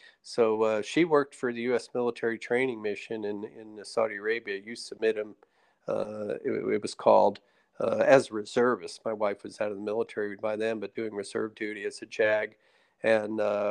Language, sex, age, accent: English, male, 40-59, American